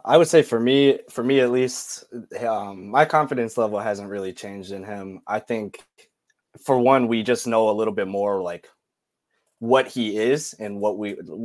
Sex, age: male, 20-39